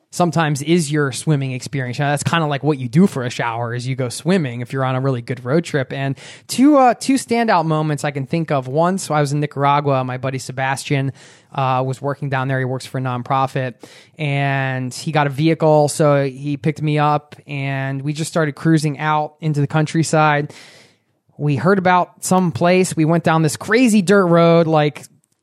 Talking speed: 210 wpm